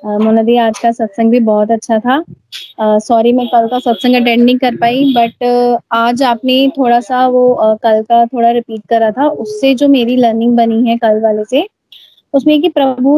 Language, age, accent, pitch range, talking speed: Hindi, 20-39, native, 235-275 Hz, 185 wpm